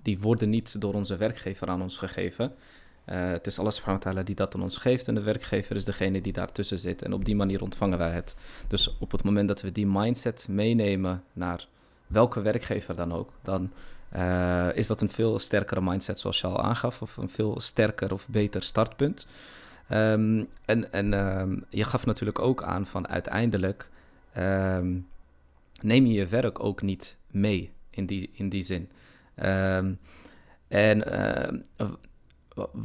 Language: Dutch